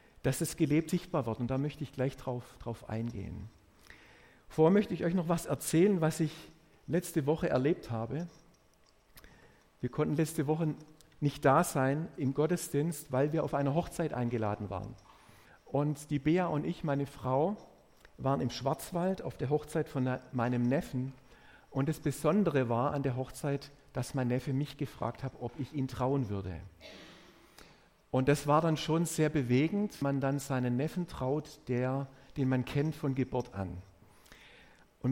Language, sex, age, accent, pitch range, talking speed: German, male, 50-69, German, 125-155 Hz, 165 wpm